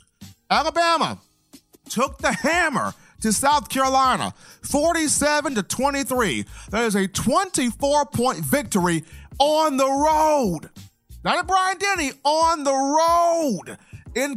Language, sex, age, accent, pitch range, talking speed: English, male, 40-59, American, 220-320 Hz, 115 wpm